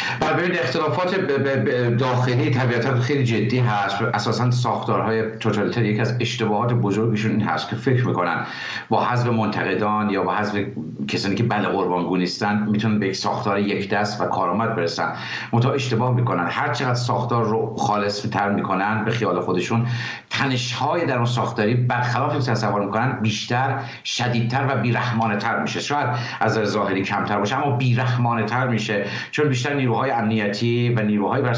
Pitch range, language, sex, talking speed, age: 105-140 Hz, English, male, 150 wpm, 60-79